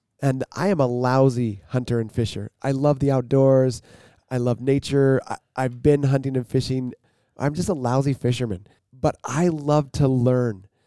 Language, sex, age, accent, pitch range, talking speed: English, male, 30-49, American, 120-145 Hz, 170 wpm